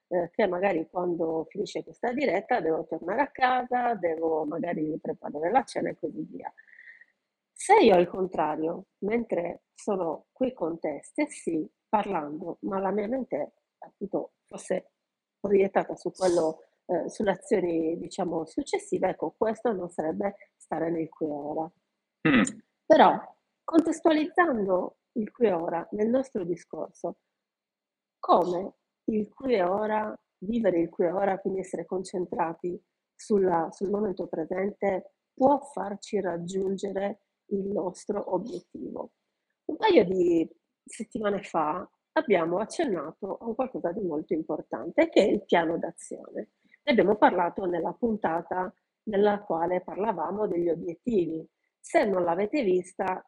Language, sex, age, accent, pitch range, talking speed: Italian, female, 50-69, native, 175-235 Hz, 125 wpm